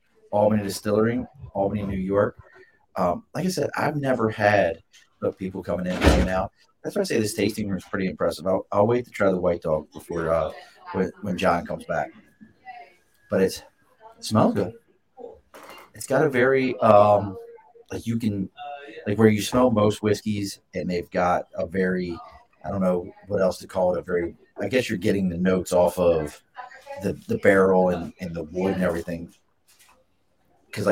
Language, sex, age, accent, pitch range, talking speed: English, male, 30-49, American, 95-120 Hz, 185 wpm